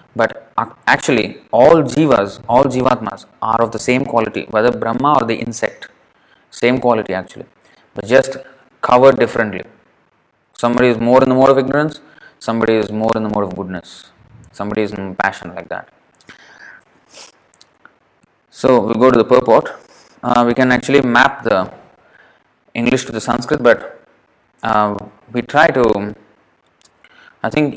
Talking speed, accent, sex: 145 wpm, Indian, male